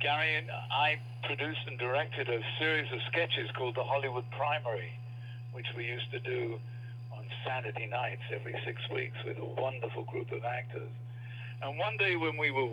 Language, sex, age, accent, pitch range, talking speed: English, male, 60-79, British, 120-125 Hz, 175 wpm